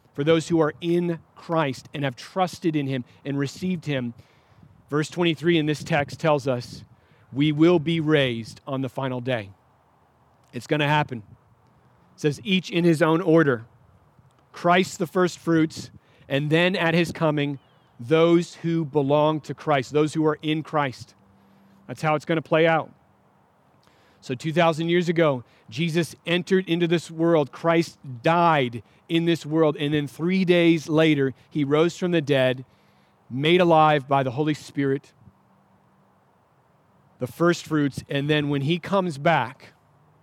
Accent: American